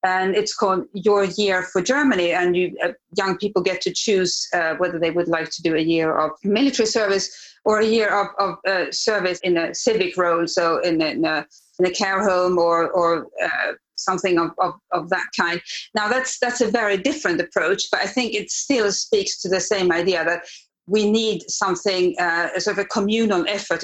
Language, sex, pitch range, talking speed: English, female, 180-215 Hz, 210 wpm